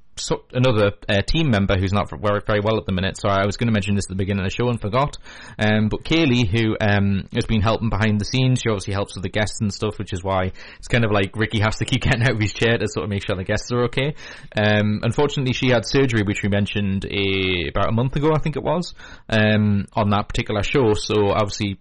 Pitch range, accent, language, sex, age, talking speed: 100-115 Hz, British, English, male, 20-39, 255 wpm